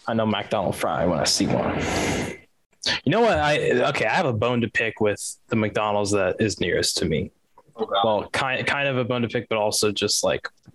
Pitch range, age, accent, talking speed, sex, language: 105-120 Hz, 10-29, American, 220 wpm, male, English